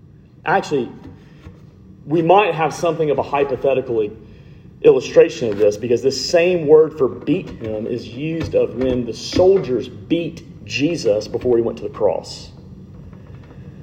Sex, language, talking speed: male, English, 140 wpm